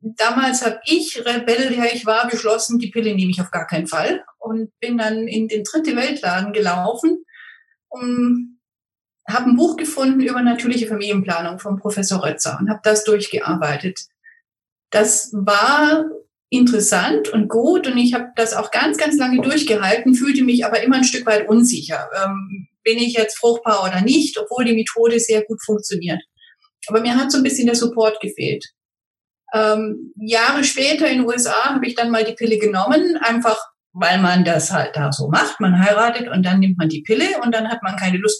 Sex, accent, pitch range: female, German, 210-260 Hz